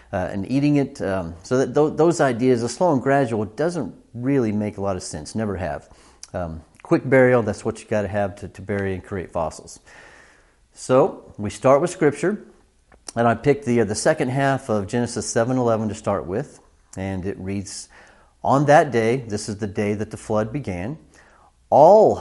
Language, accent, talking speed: English, American, 195 wpm